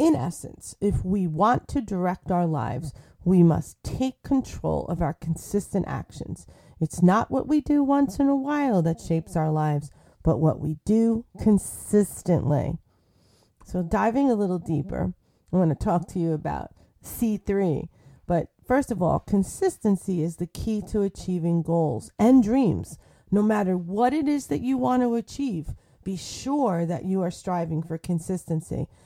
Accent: American